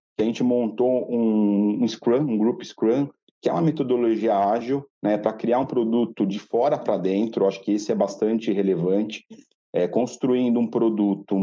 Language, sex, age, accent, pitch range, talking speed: Portuguese, male, 40-59, Brazilian, 100-120 Hz, 175 wpm